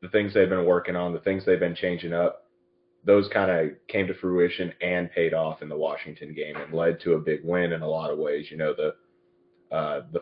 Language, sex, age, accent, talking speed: English, male, 30-49, American, 240 wpm